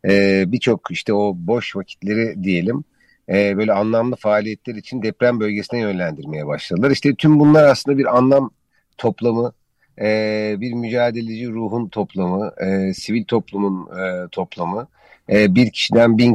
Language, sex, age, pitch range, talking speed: Turkish, male, 50-69, 95-115 Hz, 135 wpm